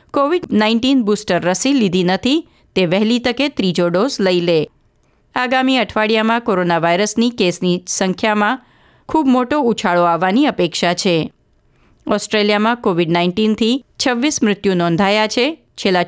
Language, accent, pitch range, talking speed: Gujarati, native, 180-235 Hz, 120 wpm